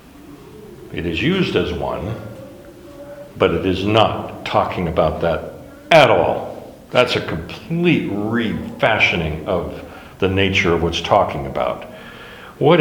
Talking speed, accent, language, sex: 120 wpm, American, English, male